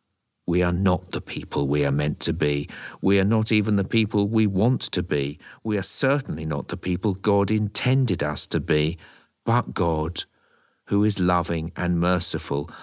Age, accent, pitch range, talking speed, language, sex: 50-69, British, 85-100 Hz, 180 wpm, English, male